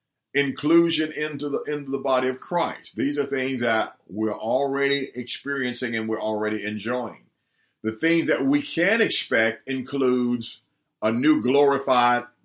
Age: 50-69